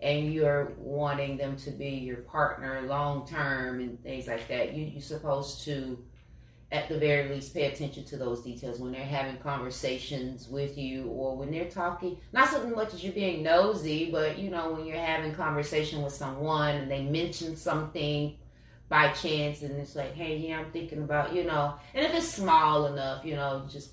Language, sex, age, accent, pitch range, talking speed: English, female, 30-49, American, 130-170 Hz, 200 wpm